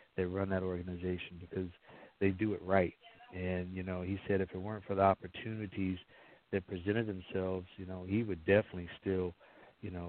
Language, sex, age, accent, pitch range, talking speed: English, male, 50-69, American, 90-105 Hz, 185 wpm